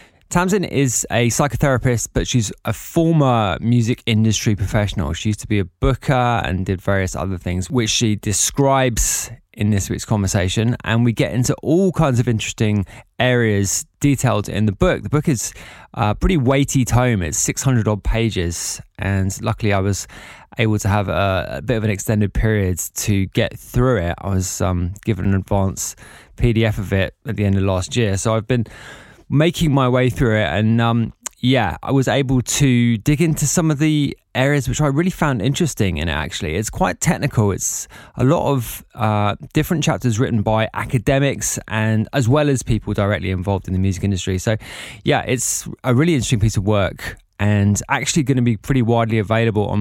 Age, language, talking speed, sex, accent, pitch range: 20-39, English, 190 wpm, male, British, 100-130 Hz